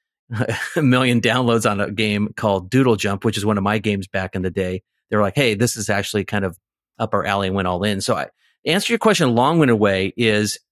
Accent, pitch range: American, 100-125 Hz